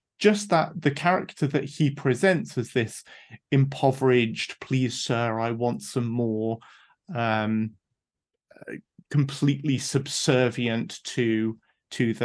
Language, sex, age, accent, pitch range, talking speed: English, male, 30-49, British, 120-150 Hz, 105 wpm